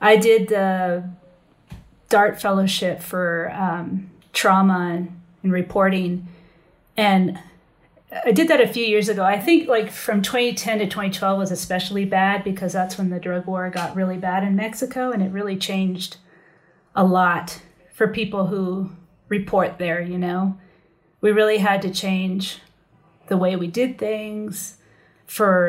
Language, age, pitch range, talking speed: English, 30-49, 180-200 Hz, 150 wpm